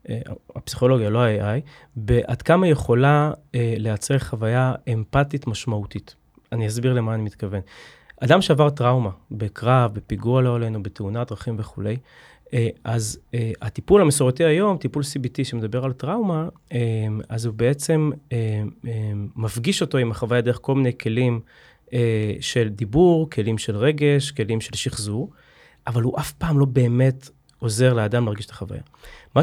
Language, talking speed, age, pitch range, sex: Hebrew, 145 wpm, 30-49, 110-140 Hz, male